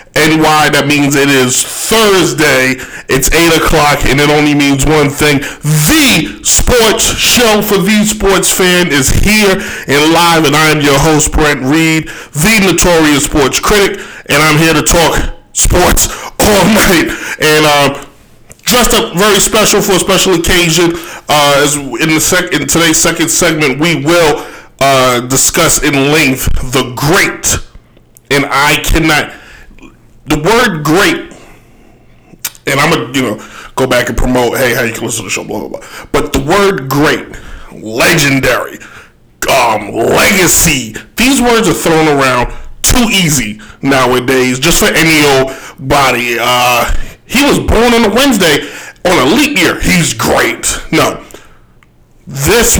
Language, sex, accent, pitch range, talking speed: English, male, American, 130-170 Hz, 150 wpm